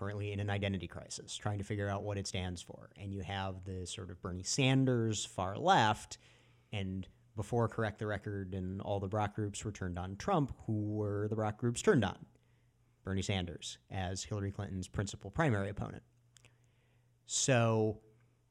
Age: 40-59